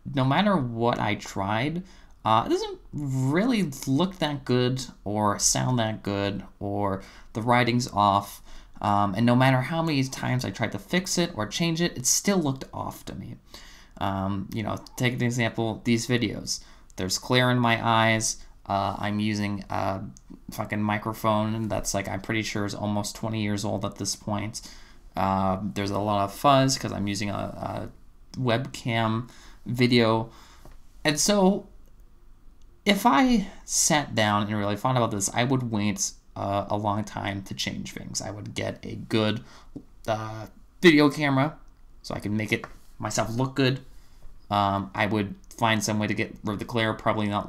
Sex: male